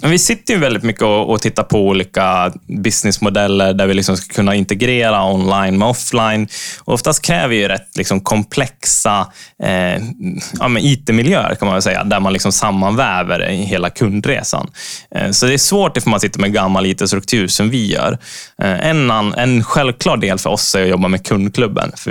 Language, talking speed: Swedish, 190 wpm